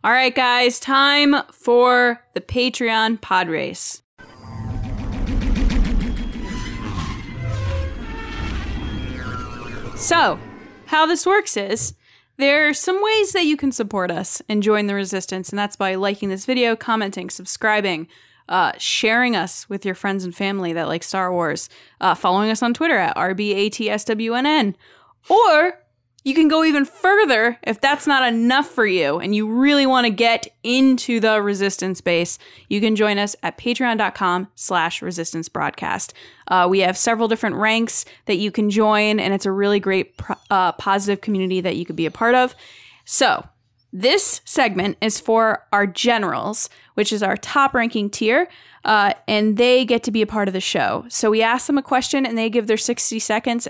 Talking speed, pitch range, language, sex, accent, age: 160 wpm, 190-250 Hz, English, female, American, 10-29